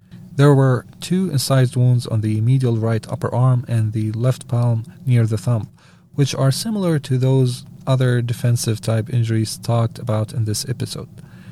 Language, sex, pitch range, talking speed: English, male, 110-145 Hz, 165 wpm